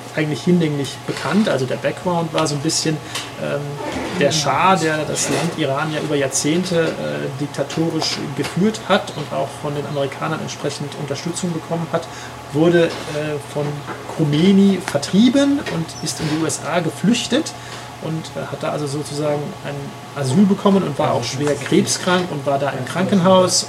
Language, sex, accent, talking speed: German, male, German, 160 wpm